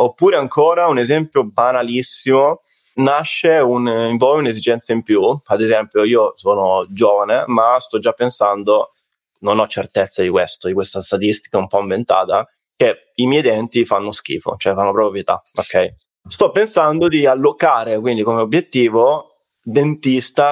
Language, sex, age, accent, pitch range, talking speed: Italian, male, 20-39, native, 110-145 Hz, 150 wpm